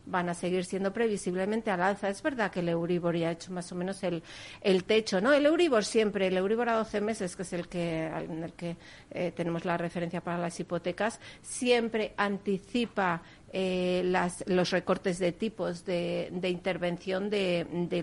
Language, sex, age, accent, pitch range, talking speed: Spanish, female, 50-69, Spanish, 175-210 Hz, 190 wpm